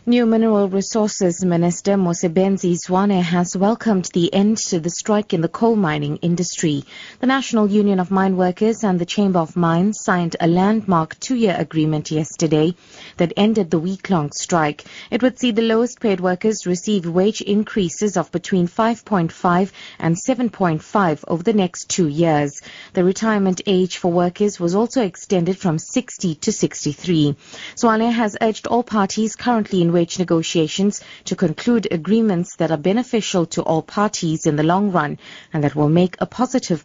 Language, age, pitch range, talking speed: English, 30-49, 170-210 Hz, 165 wpm